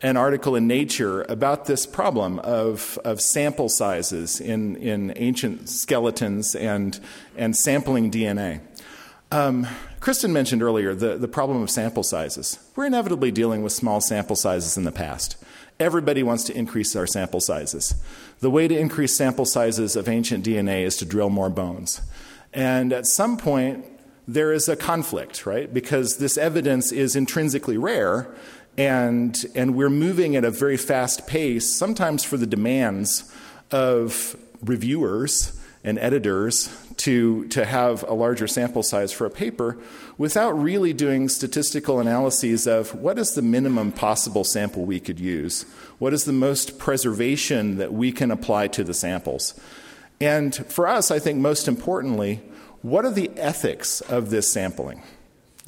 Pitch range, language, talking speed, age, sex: 110-145 Hz, English, 155 wpm, 40-59, male